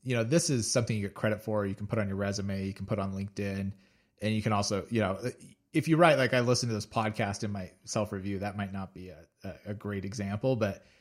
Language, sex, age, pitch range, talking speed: English, male, 30-49, 105-125 Hz, 255 wpm